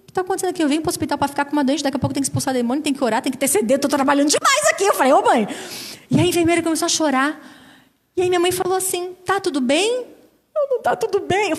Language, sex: Portuguese, female